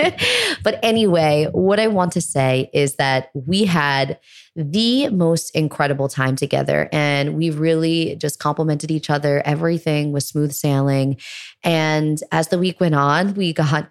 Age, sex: 20-39, female